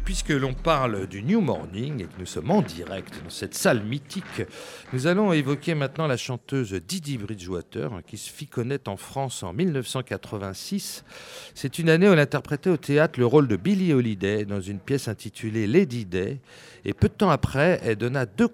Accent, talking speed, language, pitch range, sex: French, 190 wpm, French, 110-155 Hz, male